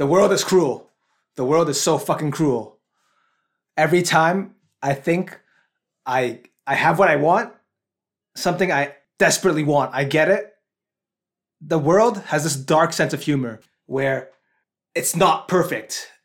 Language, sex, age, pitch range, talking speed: English, male, 20-39, 145-190 Hz, 145 wpm